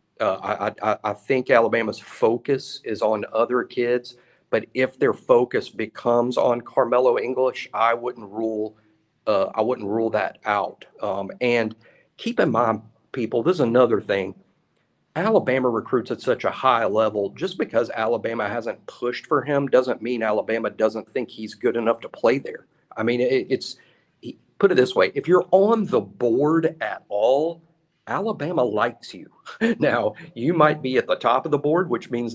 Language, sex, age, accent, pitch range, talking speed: English, male, 50-69, American, 110-150 Hz, 175 wpm